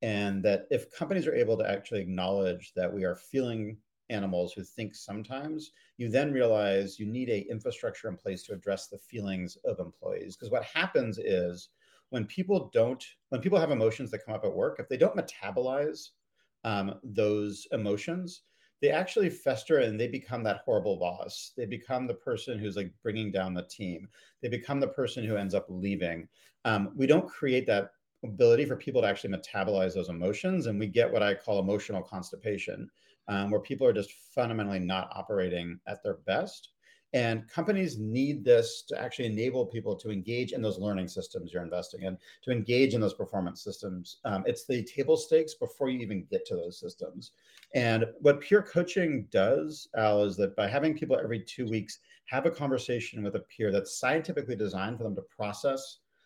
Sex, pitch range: male, 100-155 Hz